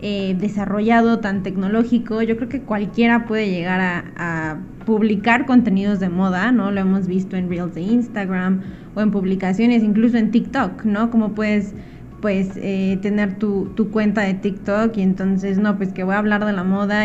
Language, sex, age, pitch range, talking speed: Spanish, female, 20-39, 190-225 Hz, 185 wpm